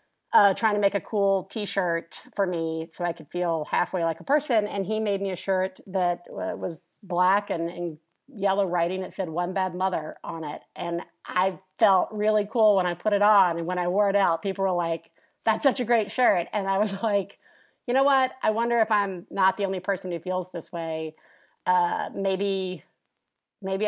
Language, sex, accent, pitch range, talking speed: English, female, American, 180-215 Hz, 210 wpm